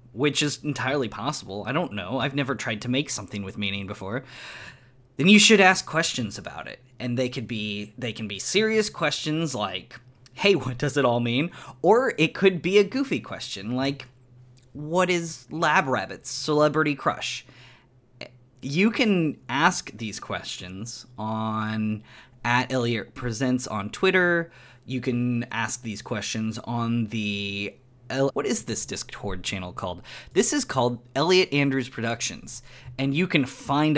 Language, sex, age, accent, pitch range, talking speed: English, male, 20-39, American, 120-150 Hz, 155 wpm